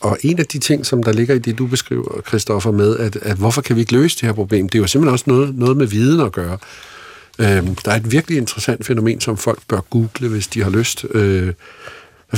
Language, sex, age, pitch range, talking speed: Danish, male, 50-69, 95-120 Hz, 240 wpm